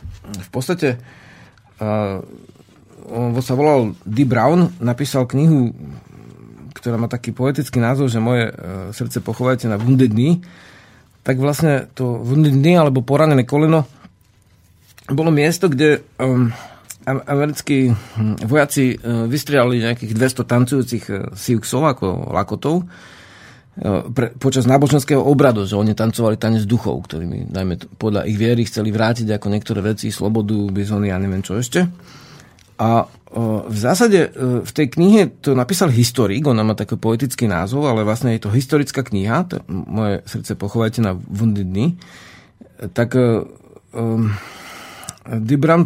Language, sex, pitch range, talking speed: Slovak, male, 110-140 Hz, 130 wpm